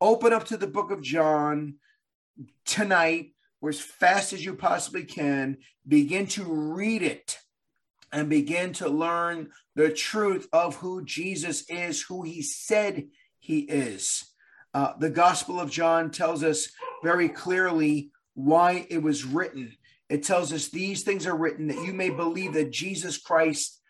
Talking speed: 155 wpm